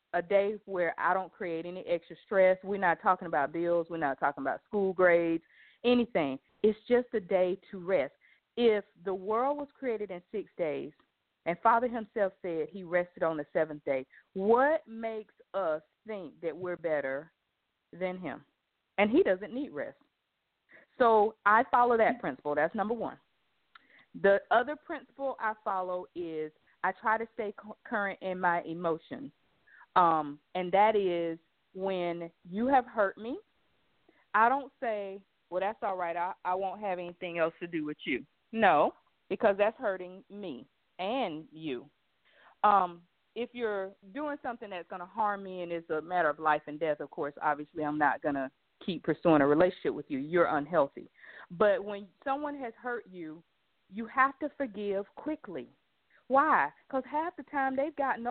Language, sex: English, female